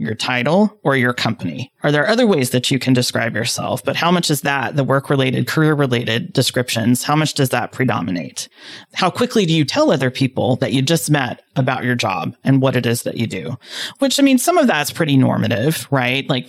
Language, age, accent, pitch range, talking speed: English, 30-49, American, 125-180 Hz, 220 wpm